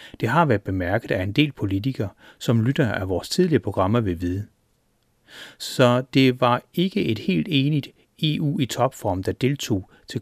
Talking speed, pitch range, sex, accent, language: 170 wpm, 110-145 Hz, male, native, Danish